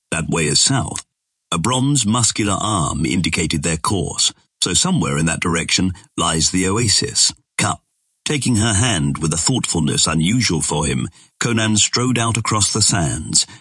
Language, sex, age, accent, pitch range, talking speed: English, male, 50-69, British, 80-110 Hz, 155 wpm